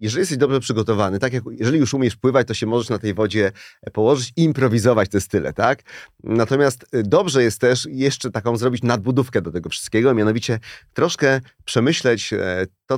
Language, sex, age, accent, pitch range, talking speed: Polish, male, 30-49, native, 115-140 Hz, 170 wpm